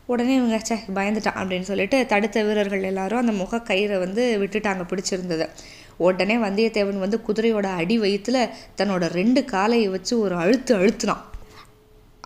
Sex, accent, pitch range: female, native, 200-270 Hz